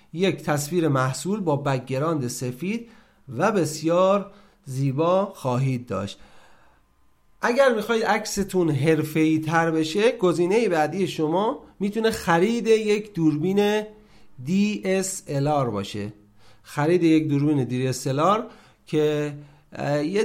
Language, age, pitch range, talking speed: Persian, 40-59, 140-195 Hz, 105 wpm